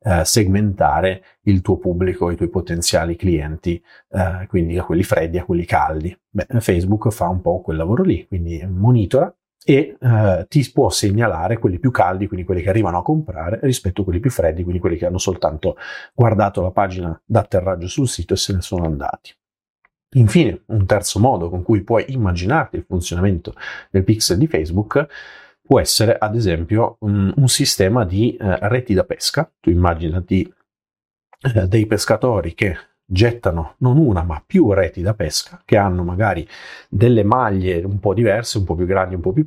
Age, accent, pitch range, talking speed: 40-59, native, 90-110 Hz, 170 wpm